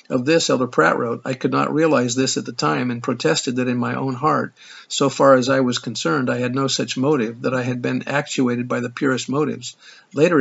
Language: English